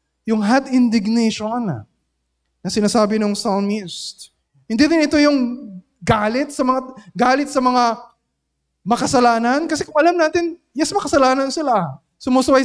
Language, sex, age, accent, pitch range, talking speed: Filipino, male, 20-39, native, 195-270 Hz, 125 wpm